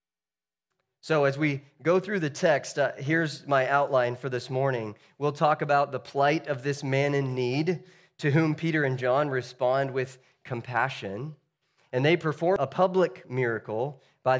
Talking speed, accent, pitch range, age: 165 wpm, American, 120-145 Hz, 30-49